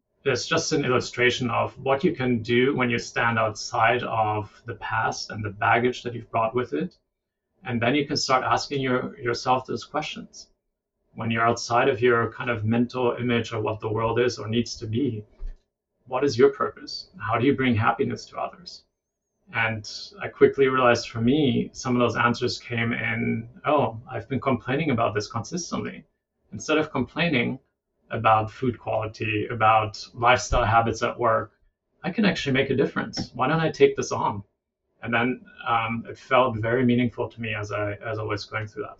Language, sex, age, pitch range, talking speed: English, male, 30-49, 110-130 Hz, 190 wpm